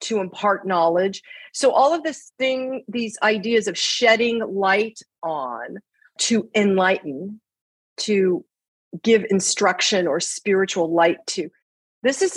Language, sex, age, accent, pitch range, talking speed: English, female, 40-59, American, 175-230 Hz, 120 wpm